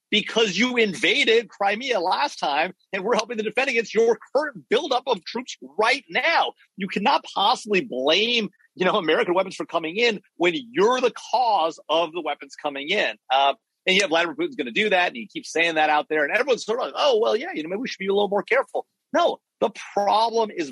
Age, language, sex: 40-59, English, male